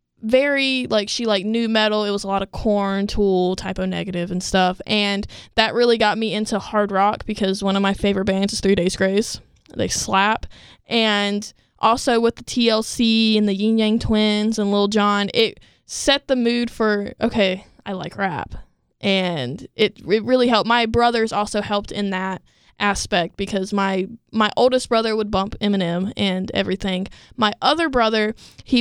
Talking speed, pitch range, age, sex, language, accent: 175 wpm, 195-230 Hz, 10-29, female, English, American